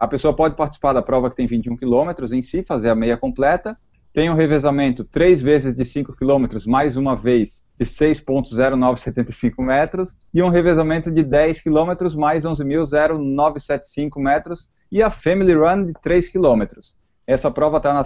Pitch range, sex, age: 130-160 Hz, male, 20-39